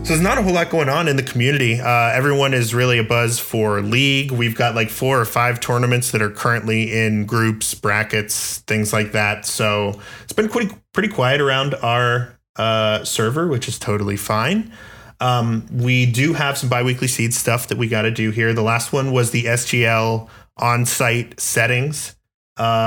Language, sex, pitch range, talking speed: English, male, 110-125 Hz, 190 wpm